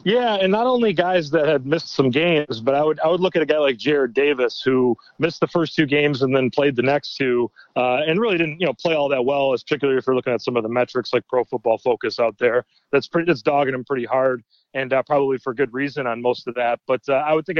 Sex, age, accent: male, 30-49, American